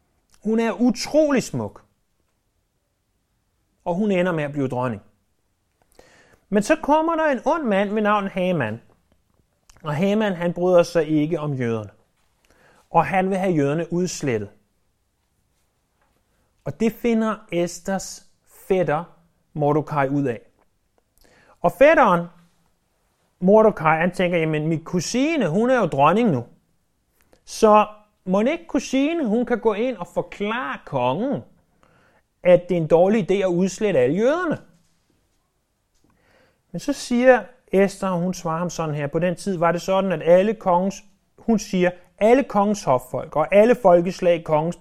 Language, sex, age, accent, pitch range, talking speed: Danish, male, 30-49, native, 150-210 Hz, 140 wpm